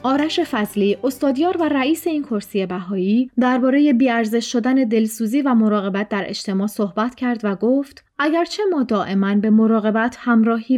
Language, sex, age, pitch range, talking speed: Persian, female, 30-49, 210-265 Hz, 145 wpm